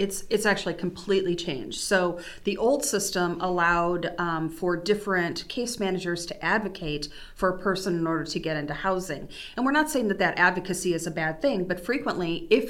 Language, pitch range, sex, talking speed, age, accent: English, 165-195 Hz, female, 190 wpm, 40-59, American